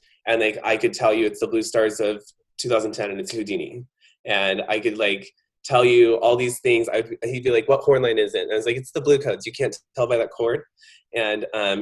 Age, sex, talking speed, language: 20-39, male, 250 wpm, English